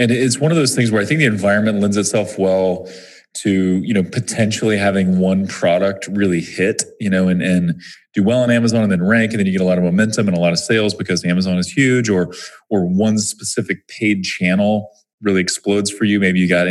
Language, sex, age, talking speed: English, male, 30-49, 230 wpm